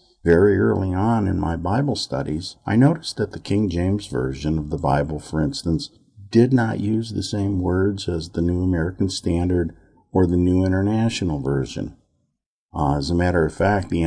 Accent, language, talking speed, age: American, English, 180 wpm, 50-69